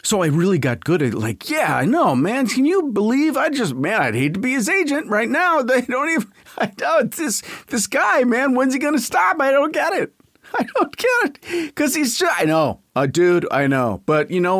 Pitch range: 125-205 Hz